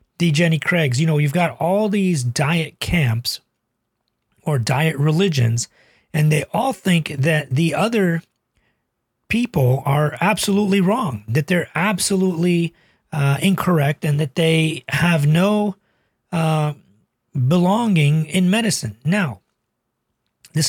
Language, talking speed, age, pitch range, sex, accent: English, 120 wpm, 40-59, 125-170 Hz, male, American